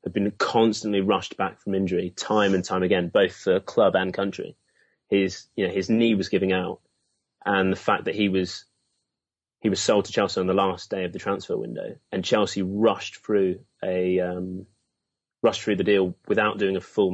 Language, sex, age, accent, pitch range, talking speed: English, male, 30-49, British, 95-105 Hz, 200 wpm